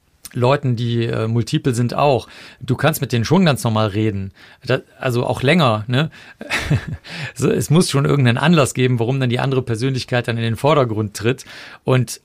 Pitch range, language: 120-140 Hz, German